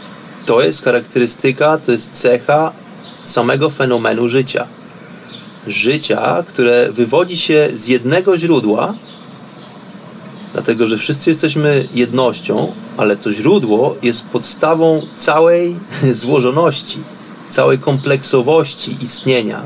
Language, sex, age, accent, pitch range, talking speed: Polish, male, 30-49, native, 130-205 Hz, 95 wpm